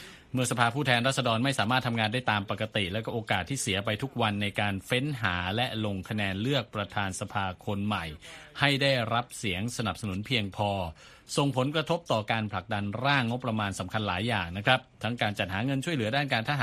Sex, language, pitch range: male, Thai, 100-125 Hz